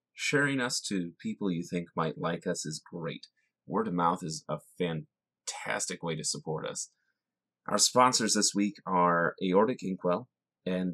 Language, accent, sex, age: English, American, male, 30-49